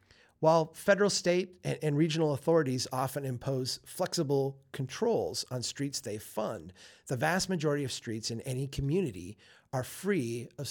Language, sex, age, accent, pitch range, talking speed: English, male, 30-49, American, 110-160 Hz, 145 wpm